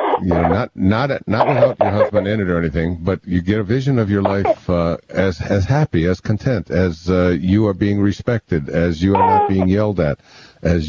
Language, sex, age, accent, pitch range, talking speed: English, male, 60-79, American, 85-115 Hz, 225 wpm